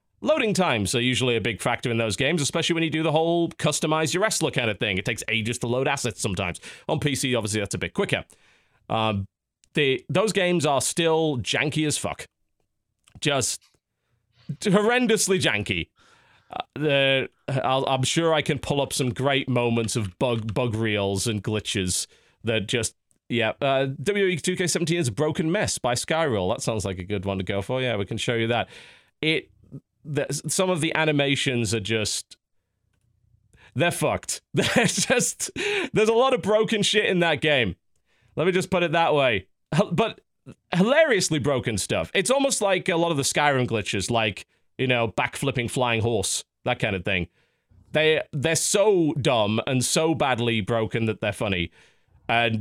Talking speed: 180 wpm